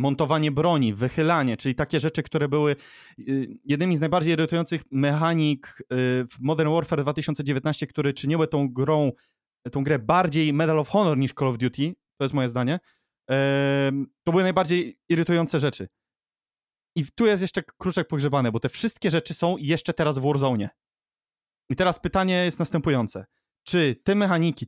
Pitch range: 125-160 Hz